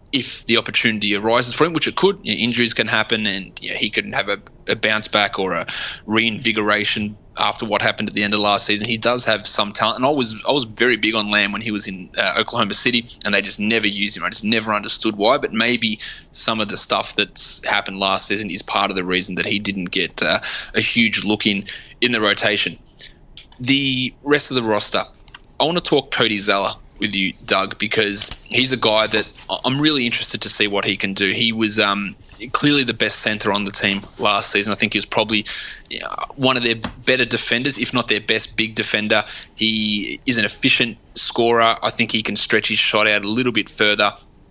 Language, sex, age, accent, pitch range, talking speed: English, male, 20-39, Australian, 105-120 Hz, 225 wpm